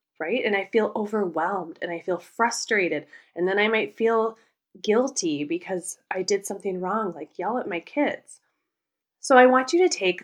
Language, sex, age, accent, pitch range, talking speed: English, female, 20-39, American, 170-225 Hz, 180 wpm